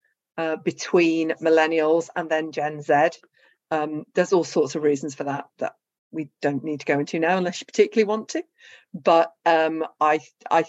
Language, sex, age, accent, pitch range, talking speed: English, female, 40-59, British, 155-180 Hz, 180 wpm